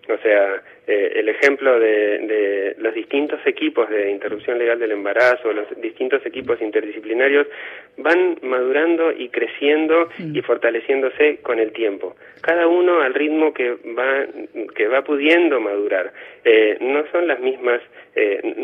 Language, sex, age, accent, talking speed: Spanish, male, 30-49, Argentinian, 140 wpm